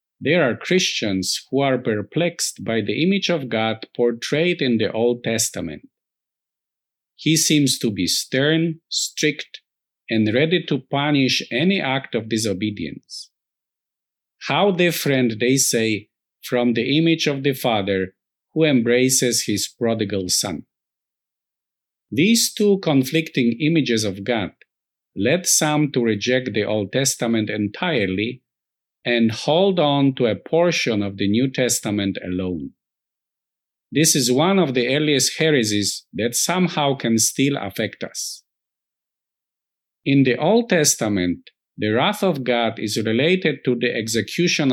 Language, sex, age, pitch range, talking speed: English, male, 50-69, 110-155 Hz, 130 wpm